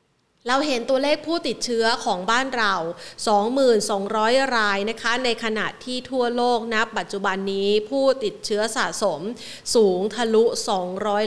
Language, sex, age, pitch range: Thai, female, 30-49, 205-245 Hz